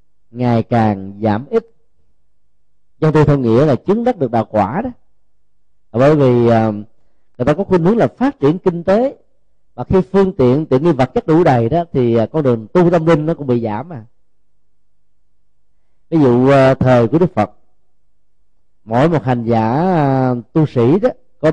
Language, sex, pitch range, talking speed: Vietnamese, male, 115-165 Hz, 175 wpm